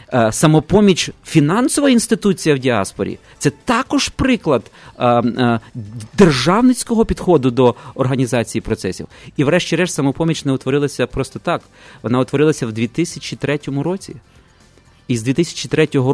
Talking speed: 110 wpm